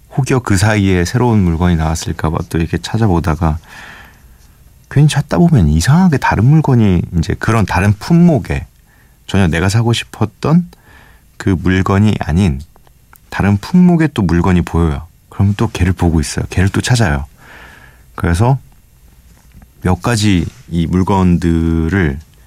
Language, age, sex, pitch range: Korean, 40-59, male, 80-110 Hz